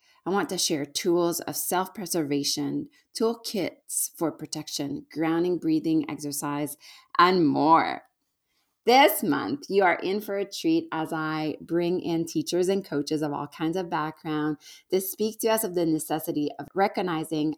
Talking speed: 150 wpm